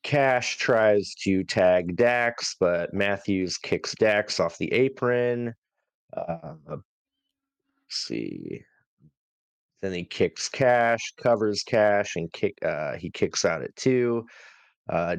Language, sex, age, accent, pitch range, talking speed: English, male, 30-49, American, 90-120 Hz, 115 wpm